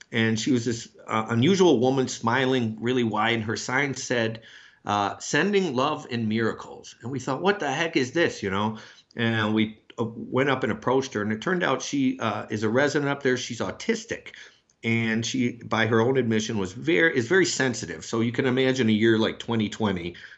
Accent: American